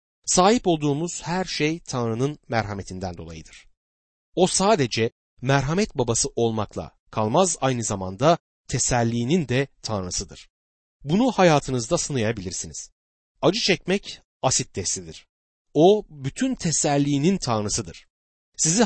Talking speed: 95 wpm